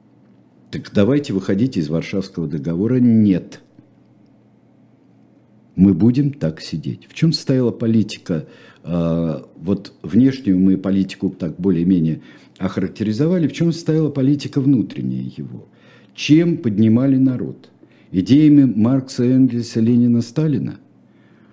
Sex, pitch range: male, 95-135 Hz